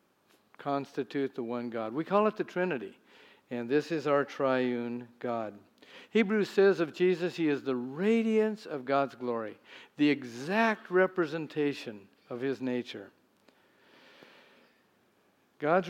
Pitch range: 130-175 Hz